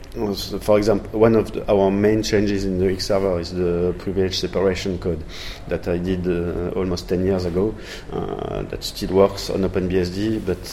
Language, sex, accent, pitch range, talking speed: English, male, French, 90-100 Hz, 175 wpm